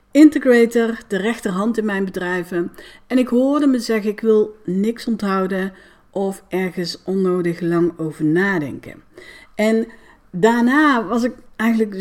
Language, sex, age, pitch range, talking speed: Dutch, female, 60-79, 190-245 Hz, 130 wpm